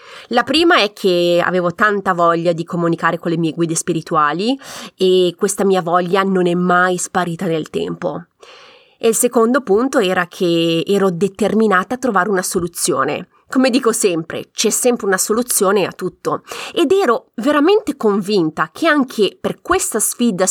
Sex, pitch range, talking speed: female, 180-240 Hz, 160 wpm